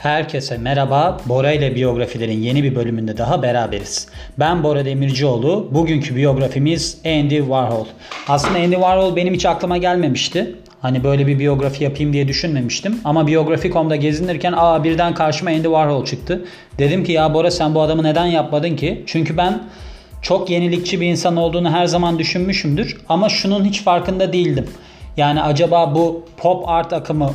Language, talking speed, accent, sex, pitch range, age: Turkish, 155 wpm, native, male, 140-175 Hz, 30-49